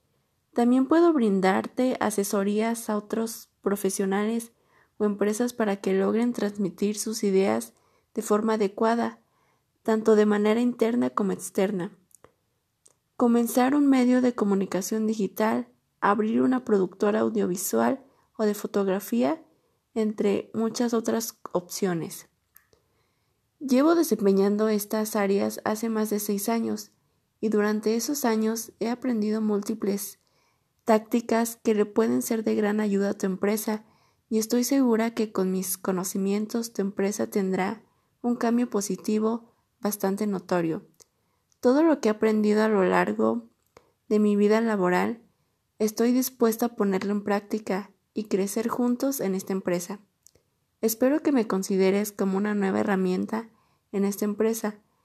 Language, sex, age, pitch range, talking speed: Spanish, female, 20-39, 195-230 Hz, 130 wpm